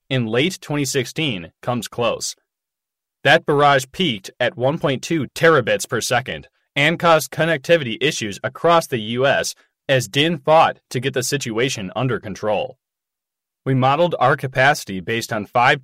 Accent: American